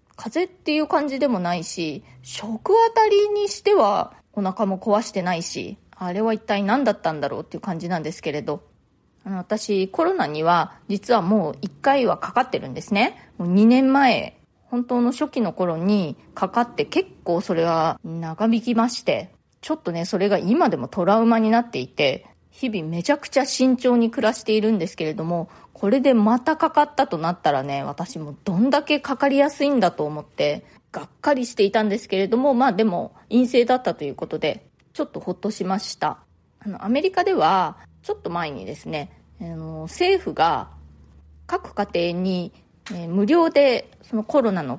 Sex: female